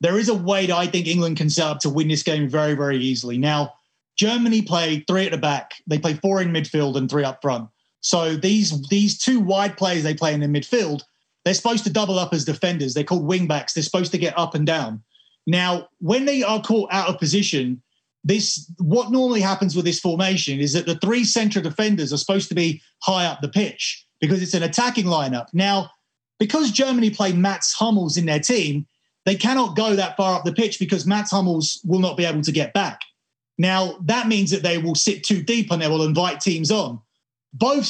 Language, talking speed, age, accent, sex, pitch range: English, 220 wpm, 30-49, British, male, 155-210 Hz